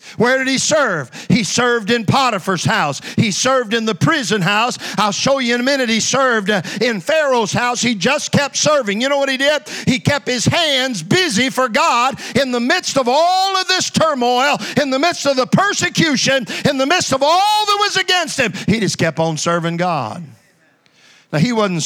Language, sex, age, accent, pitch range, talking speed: English, male, 50-69, American, 165-250 Hz, 205 wpm